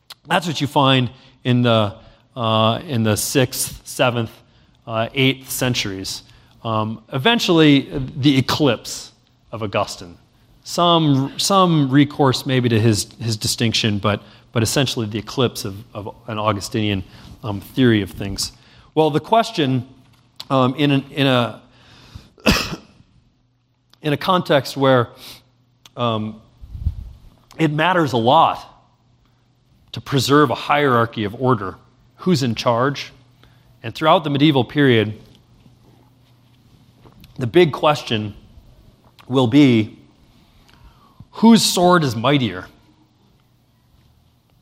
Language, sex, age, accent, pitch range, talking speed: English, male, 40-59, American, 115-140 Hz, 110 wpm